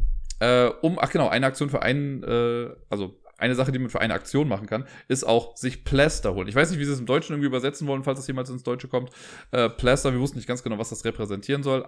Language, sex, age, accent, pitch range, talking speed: German, male, 20-39, German, 105-140 Hz, 250 wpm